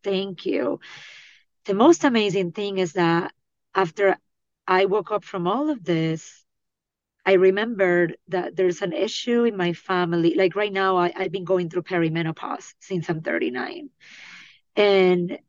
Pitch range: 175-215 Hz